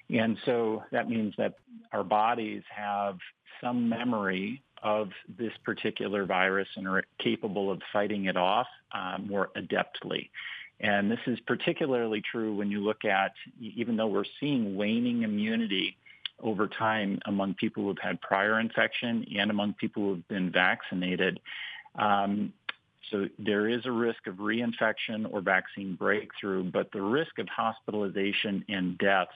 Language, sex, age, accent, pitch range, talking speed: English, male, 50-69, American, 95-110 Hz, 145 wpm